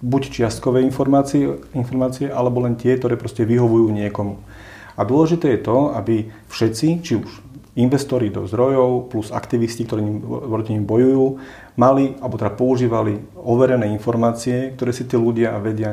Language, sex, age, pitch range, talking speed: Slovak, male, 40-59, 105-130 Hz, 145 wpm